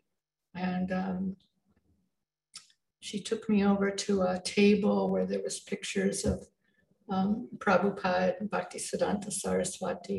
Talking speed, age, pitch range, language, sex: 120 wpm, 60-79, 190-255 Hz, English, female